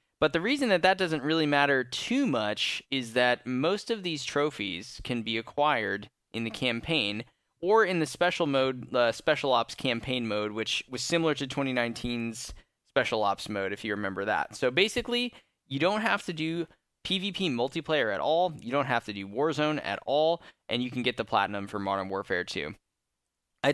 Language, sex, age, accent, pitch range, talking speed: English, male, 10-29, American, 115-155 Hz, 190 wpm